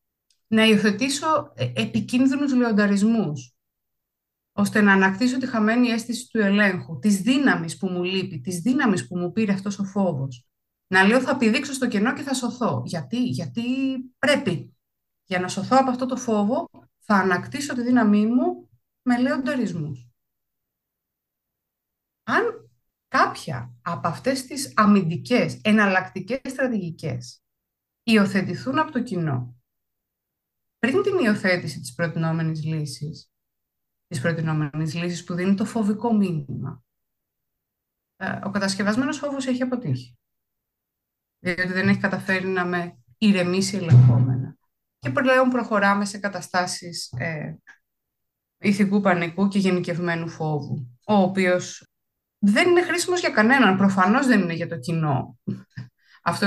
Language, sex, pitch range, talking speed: Greek, female, 165-245 Hz, 120 wpm